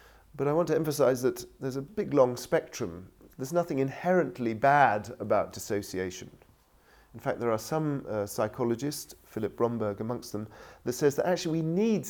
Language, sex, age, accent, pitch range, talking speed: English, male, 40-59, British, 105-130 Hz, 170 wpm